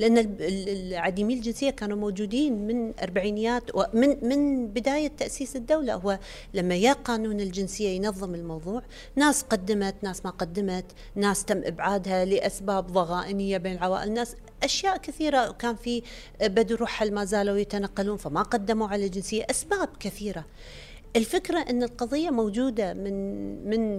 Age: 40-59